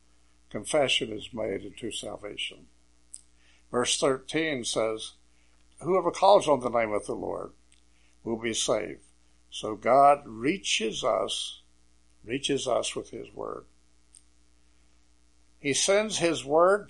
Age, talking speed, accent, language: 60-79, 115 wpm, American, English